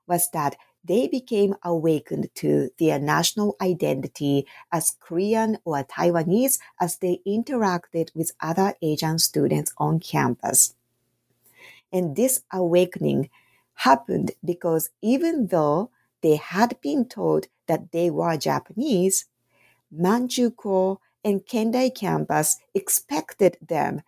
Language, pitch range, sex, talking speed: English, 155-205 Hz, female, 105 wpm